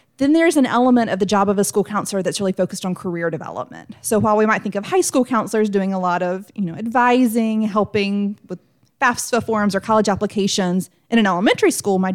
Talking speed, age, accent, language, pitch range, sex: 220 wpm, 30-49, American, English, 175-220 Hz, female